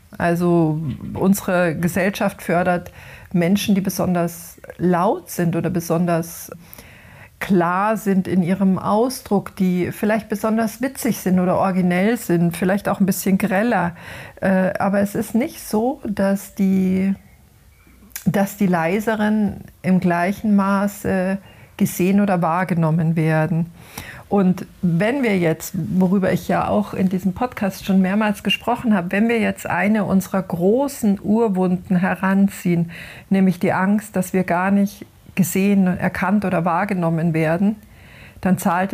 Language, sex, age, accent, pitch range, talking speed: German, female, 50-69, German, 180-205 Hz, 125 wpm